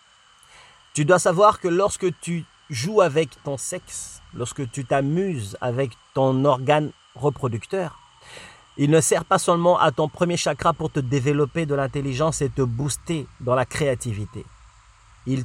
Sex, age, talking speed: male, 30-49, 150 wpm